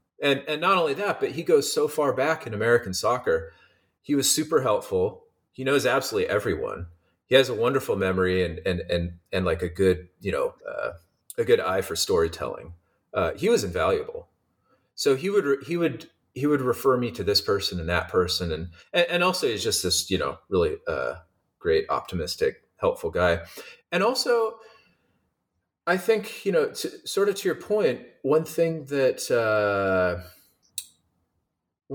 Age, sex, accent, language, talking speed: 30-49, male, American, English, 170 wpm